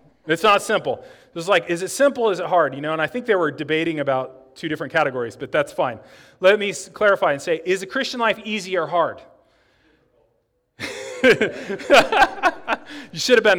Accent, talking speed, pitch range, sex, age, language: American, 190 wpm, 165-220 Hz, male, 30-49, English